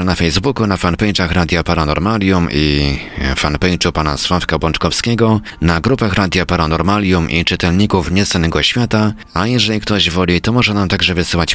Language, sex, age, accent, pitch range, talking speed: Polish, male, 40-59, native, 75-100 Hz, 145 wpm